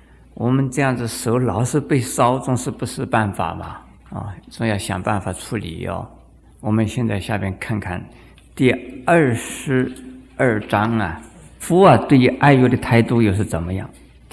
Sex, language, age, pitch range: male, Chinese, 50-69, 100-140 Hz